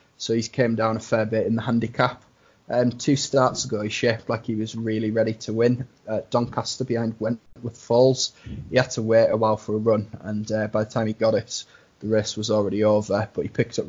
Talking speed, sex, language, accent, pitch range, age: 240 wpm, male, English, British, 105-120 Hz, 20-39